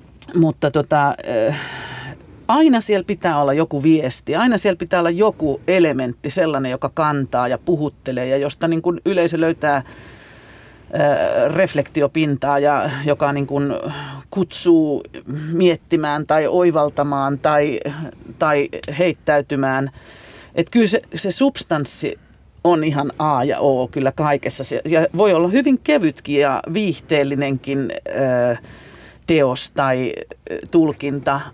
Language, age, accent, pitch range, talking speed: Finnish, 40-59, native, 140-165 Hz, 110 wpm